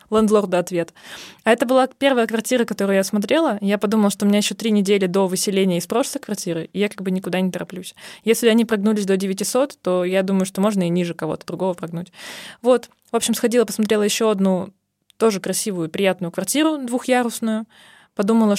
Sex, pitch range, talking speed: female, 195-235 Hz, 185 wpm